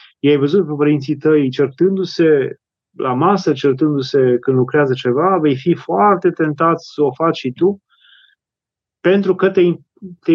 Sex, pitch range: male, 140-180 Hz